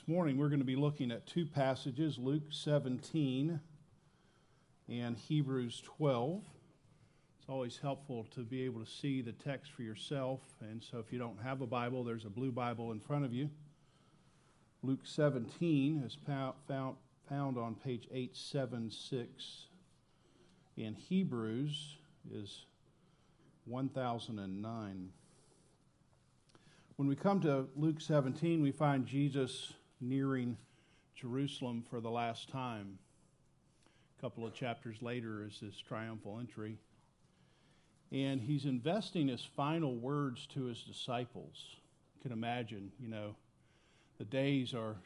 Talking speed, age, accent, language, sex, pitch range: 125 wpm, 50-69, American, English, male, 115-145 Hz